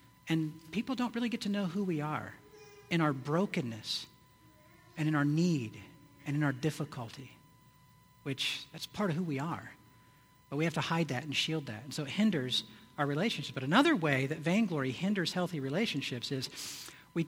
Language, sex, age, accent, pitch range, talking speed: English, male, 50-69, American, 140-190 Hz, 185 wpm